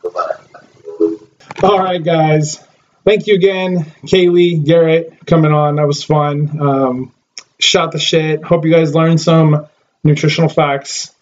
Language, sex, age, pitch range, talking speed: English, male, 20-39, 135-165 Hz, 130 wpm